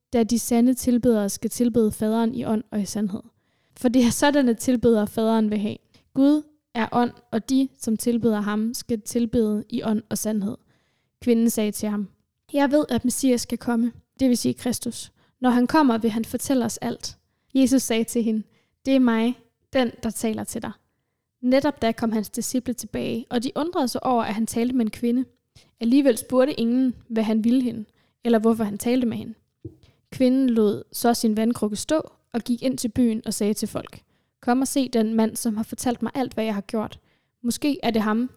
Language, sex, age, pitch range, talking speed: Danish, female, 10-29, 220-250 Hz, 205 wpm